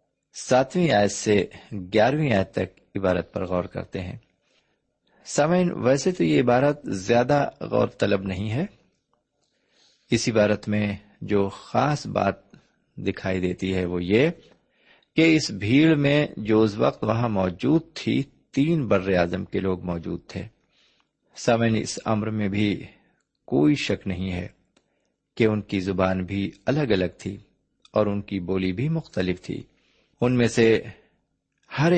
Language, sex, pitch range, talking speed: Urdu, male, 95-135 Hz, 145 wpm